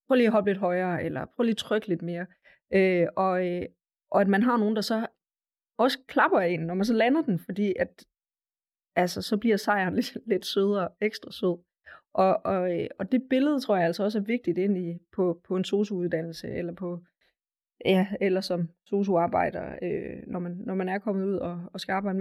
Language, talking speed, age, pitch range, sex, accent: Danish, 205 wpm, 20-39, 180-210 Hz, female, native